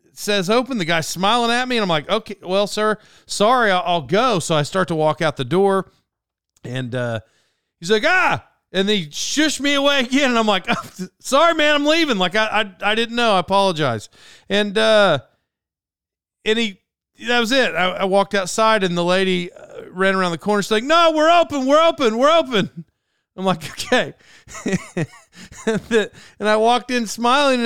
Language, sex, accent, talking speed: English, male, American, 185 wpm